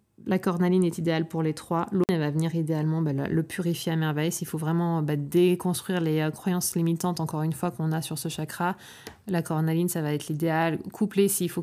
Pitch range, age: 160-185 Hz, 20-39